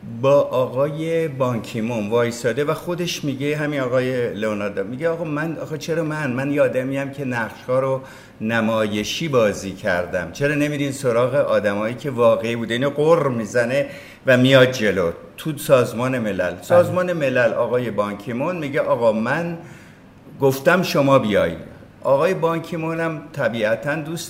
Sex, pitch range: male, 115-160 Hz